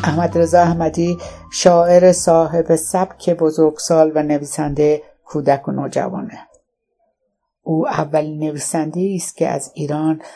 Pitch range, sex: 145-165 Hz, female